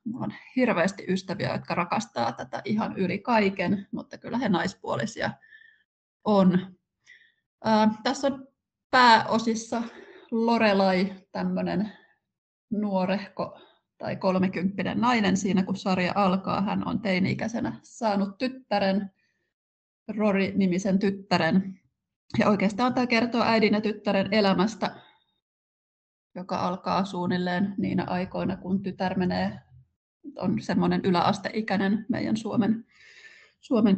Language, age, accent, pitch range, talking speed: Finnish, 20-39, native, 180-220 Hz, 100 wpm